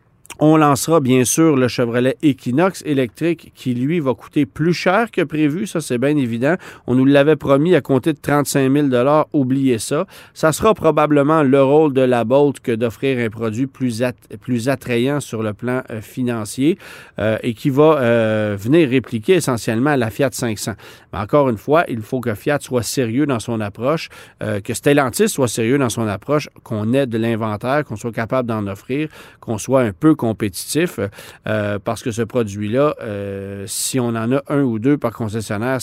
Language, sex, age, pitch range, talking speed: French, male, 40-59, 115-150 Hz, 190 wpm